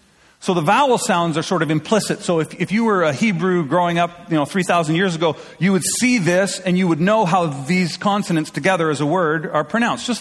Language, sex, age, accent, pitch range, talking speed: English, male, 40-59, American, 145-195 Hz, 235 wpm